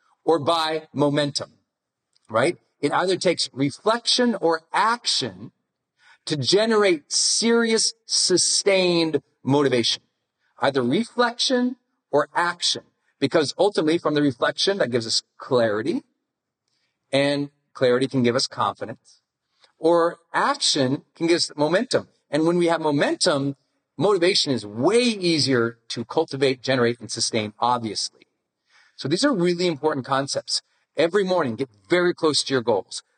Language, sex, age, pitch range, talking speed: English, male, 40-59, 135-190 Hz, 125 wpm